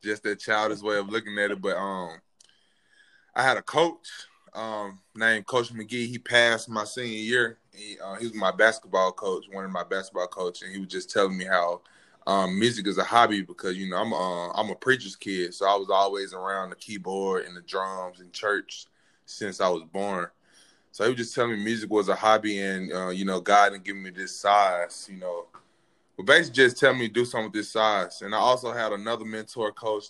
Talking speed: 225 wpm